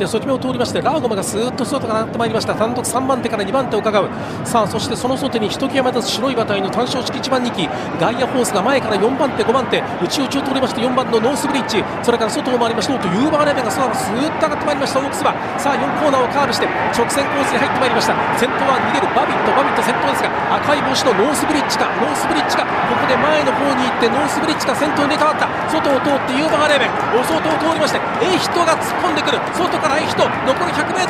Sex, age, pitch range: male, 40-59, 235-290 Hz